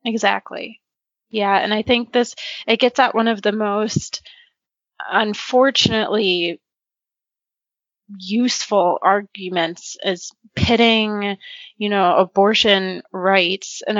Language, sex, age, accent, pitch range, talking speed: English, female, 20-39, American, 185-225 Hz, 100 wpm